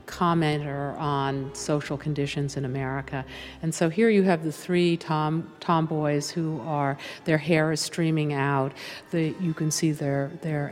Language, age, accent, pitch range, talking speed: English, 50-69, American, 135-160 Hz, 155 wpm